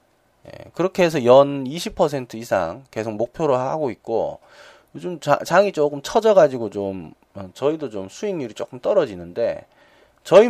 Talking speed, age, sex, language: 120 wpm, 40-59, male, English